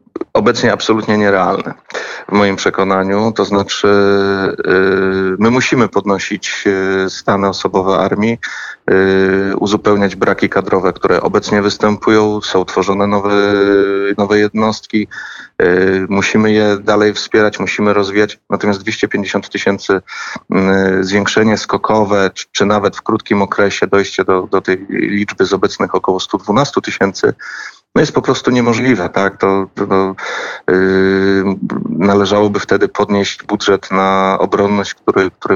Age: 40-59